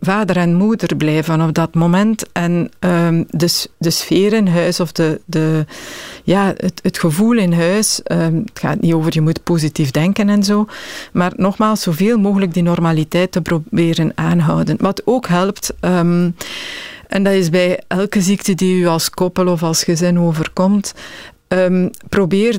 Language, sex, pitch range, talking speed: Dutch, female, 170-200 Hz, 150 wpm